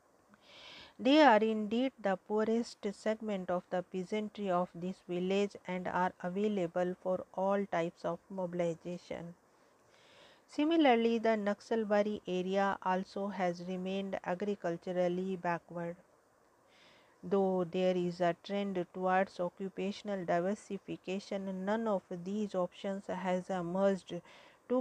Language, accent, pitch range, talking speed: English, Indian, 180-205 Hz, 105 wpm